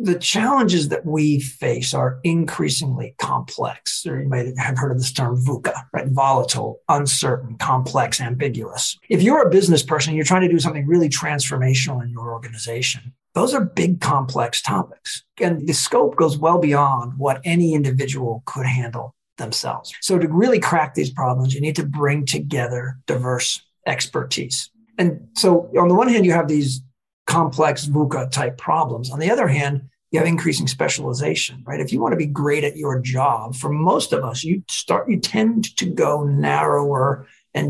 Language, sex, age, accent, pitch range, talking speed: English, male, 50-69, American, 130-155 Hz, 175 wpm